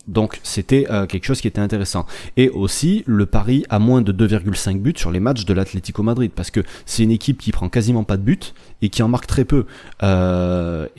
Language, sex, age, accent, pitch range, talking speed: French, male, 30-49, French, 95-125 Hz, 225 wpm